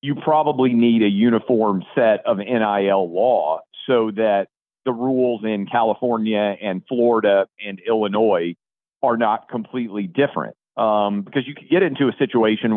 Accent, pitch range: American, 105-130 Hz